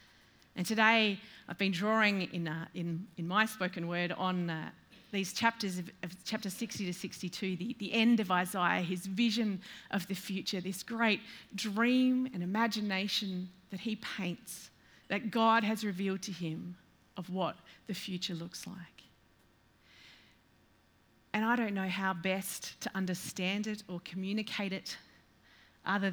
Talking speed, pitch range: 150 wpm, 180-215 Hz